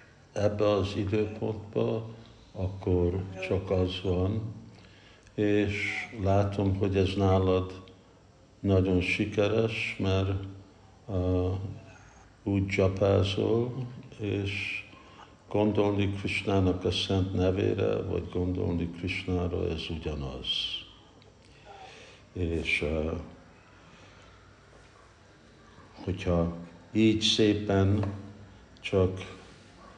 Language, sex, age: Hungarian, male, 60-79